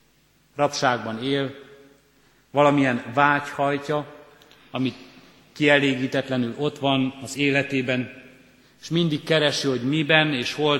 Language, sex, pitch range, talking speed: Hungarian, male, 120-140 Hz, 95 wpm